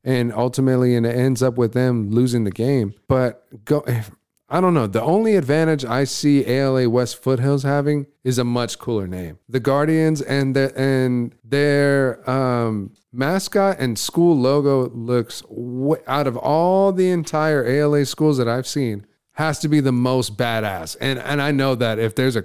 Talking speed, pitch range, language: 175 wpm, 120-140 Hz, English